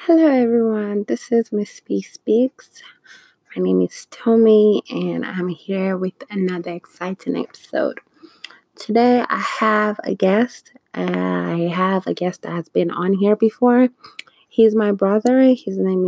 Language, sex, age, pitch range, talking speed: English, female, 20-39, 175-220 Hz, 140 wpm